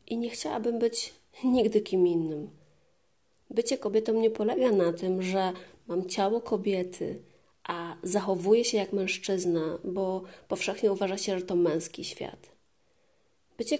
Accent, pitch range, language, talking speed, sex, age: native, 185-235 Hz, Polish, 135 wpm, female, 30-49